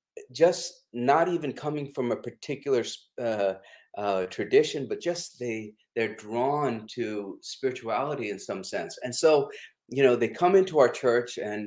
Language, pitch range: English, 115-150 Hz